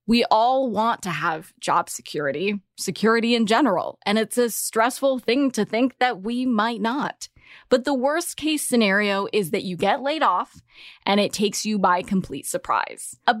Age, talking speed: 20-39, 180 wpm